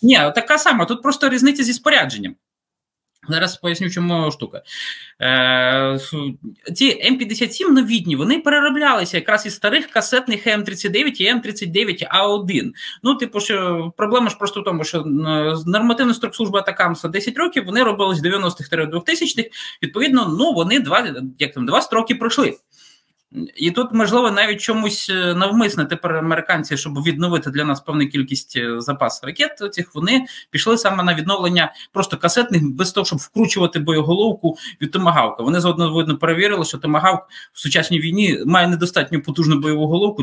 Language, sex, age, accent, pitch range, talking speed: Ukrainian, male, 20-39, native, 160-225 Hz, 145 wpm